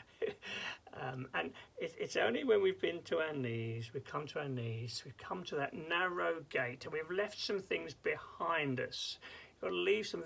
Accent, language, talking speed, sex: British, English, 205 wpm, male